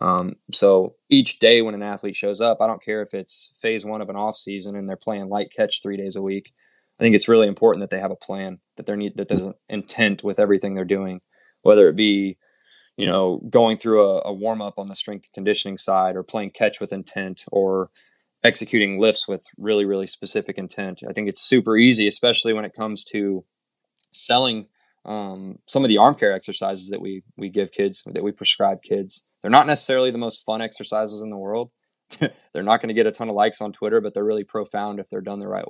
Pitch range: 100-110 Hz